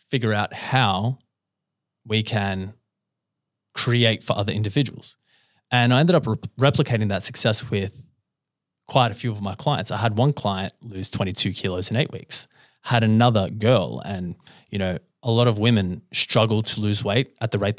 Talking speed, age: 170 wpm, 20-39